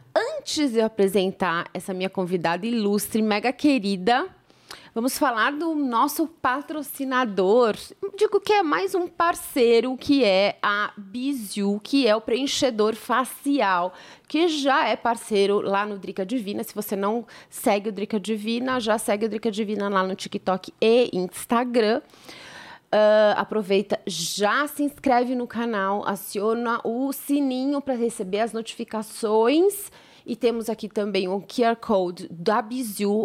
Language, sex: Portuguese, female